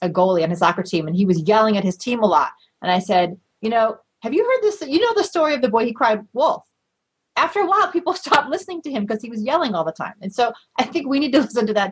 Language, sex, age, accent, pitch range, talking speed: English, female, 30-49, American, 185-255 Hz, 295 wpm